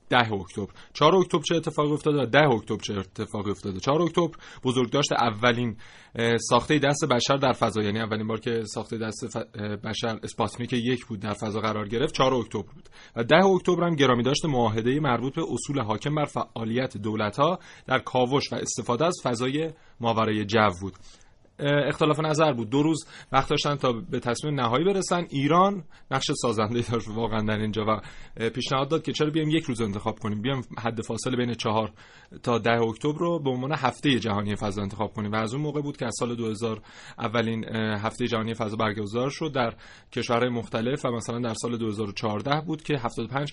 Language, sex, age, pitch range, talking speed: Persian, male, 30-49, 110-140 Hz, 185 wpm